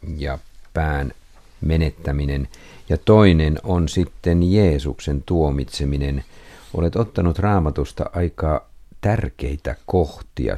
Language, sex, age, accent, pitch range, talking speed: Finnish, male, 50-69, native, 70-85 Hz, 85 wpm